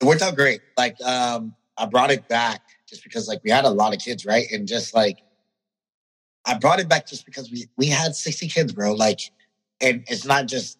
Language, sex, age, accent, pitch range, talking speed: English, male, 30-49, American, 105-135 Hz, 220 wpm